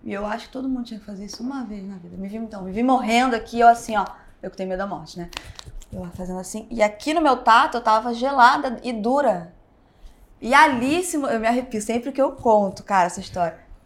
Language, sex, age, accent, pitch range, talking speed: Portuguese, female, 20-39, Brazilian, 195-265 Hz, 245 wpm